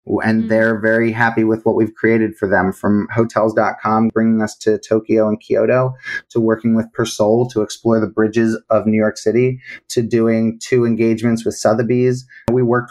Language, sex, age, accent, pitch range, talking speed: English, male, 30-49, American, 110-125 Hz, 175 wpm